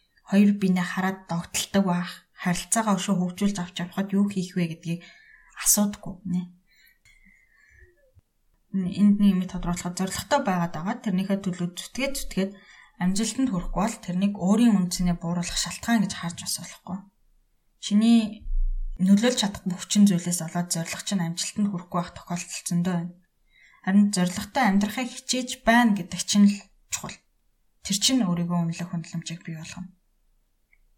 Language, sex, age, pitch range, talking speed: Russian, female, 20-39, 175-205 Hz, 110 wpm